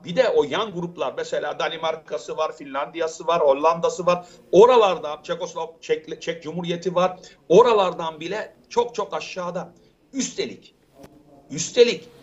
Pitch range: 170-250 Hz